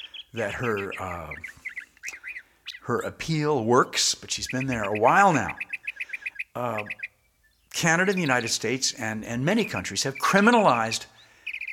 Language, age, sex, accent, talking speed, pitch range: English, 60-79, male, American, 130 wpm, 110-165 Hz